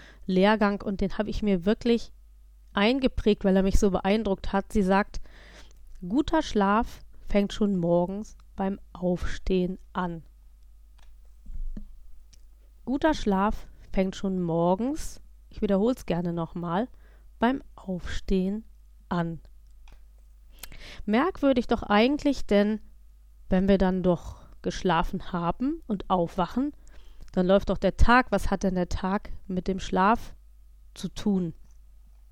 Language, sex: German, female